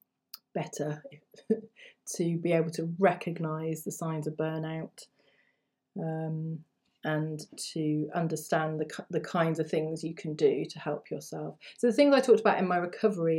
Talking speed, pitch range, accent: 150 wpm, 155-195 Hz, British